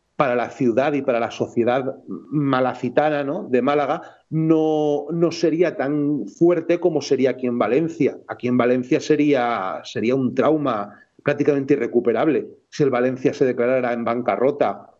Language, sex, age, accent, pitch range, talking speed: Portuguese, male, 40-59, Spanish, 125-160 Hz, 145 wpm